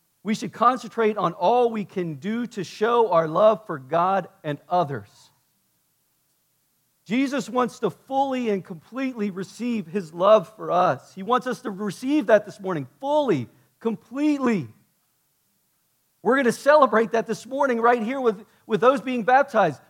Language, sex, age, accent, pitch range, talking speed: English, male, 40-59, American, 155-235 Hz, 155 wpm